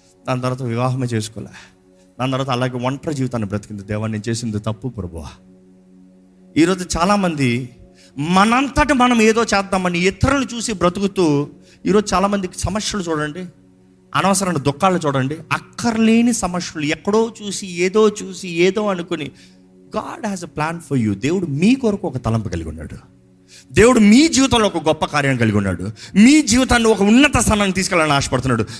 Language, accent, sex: Telugu, native, male